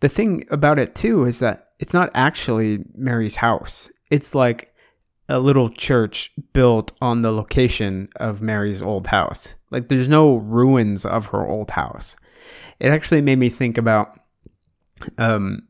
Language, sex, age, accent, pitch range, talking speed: English, male, 30-49, American, 110-130 Hz, 155 wpm